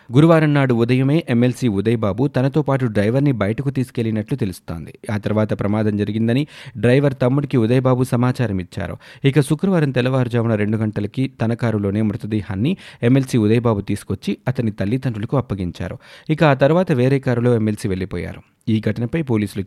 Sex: male